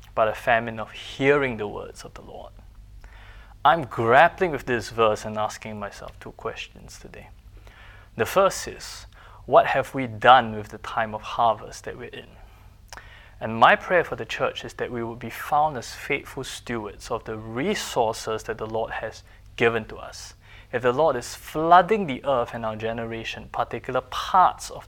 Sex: male